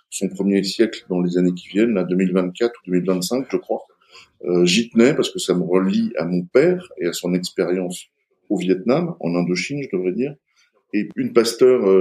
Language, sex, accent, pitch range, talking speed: French, male, French, 90-120 Hz, 195 wpm